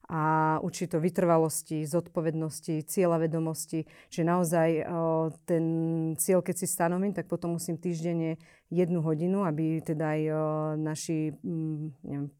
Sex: female